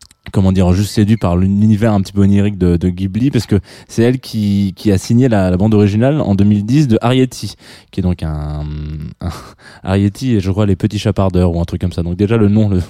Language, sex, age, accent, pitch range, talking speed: French, male, 20-39, French, 90-120 Hz, 240 wpm